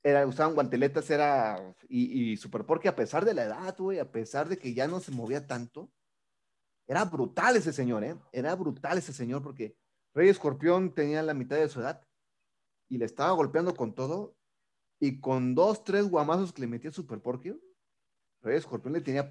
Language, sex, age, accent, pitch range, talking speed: Spanish, male, 30-49, Mexican, 120-155 Hz, 185 wpm